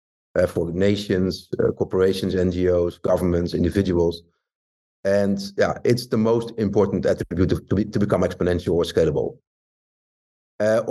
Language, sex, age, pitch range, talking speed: English, male, 50-69, 95-120 Hz, 125 wpm